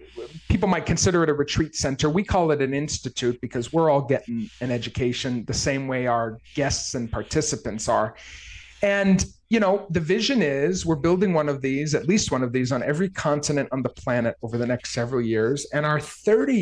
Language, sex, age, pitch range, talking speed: English, male, 40-59, 125-165 Hz, 200 wpm